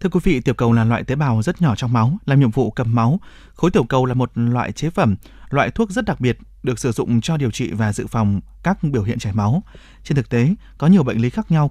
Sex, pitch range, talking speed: male, 110-155 Hz, 275 wpm